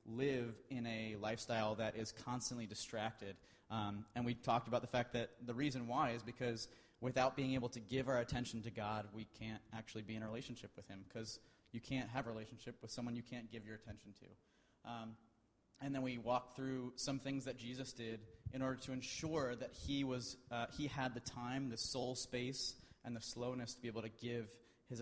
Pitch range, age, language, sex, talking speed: 110-125 Hz, 30-49, English, male, 210 wpm